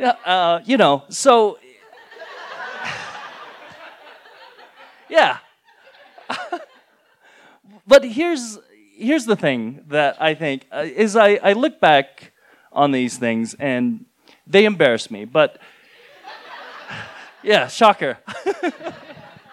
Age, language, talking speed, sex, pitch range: 30-49, English, 90 wpm, male, 145-215 Hz